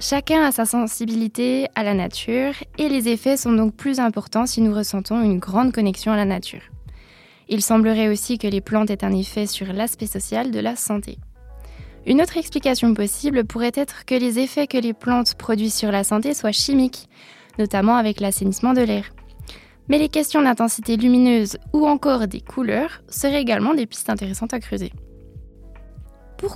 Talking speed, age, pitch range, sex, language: 175 wpm, 20-39, 215-265 Hz, female, French